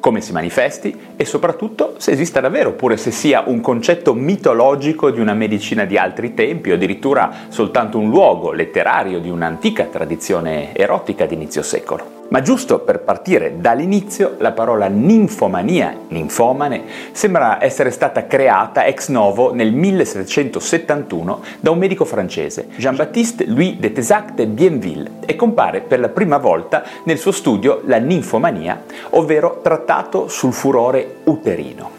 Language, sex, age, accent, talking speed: Italian, male, 30-49, native, 145 wpm